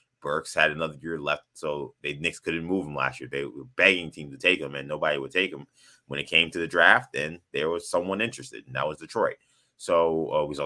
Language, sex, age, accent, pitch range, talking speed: English, male, 20-39, American, 80-105 Hz, 250 wpm